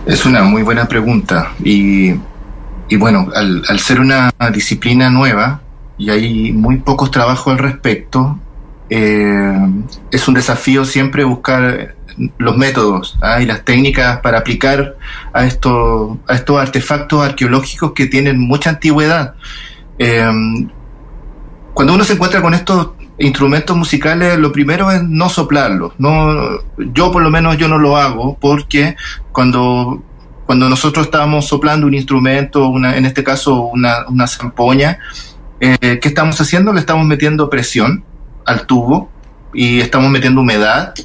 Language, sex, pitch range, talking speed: Spanish, male, 115-145 Hz, 140 wpm